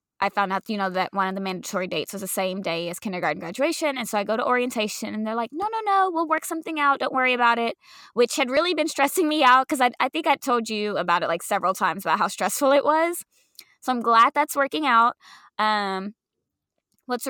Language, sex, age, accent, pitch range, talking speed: English, female, 20-39, American, 195-245 Hz, 245 wpm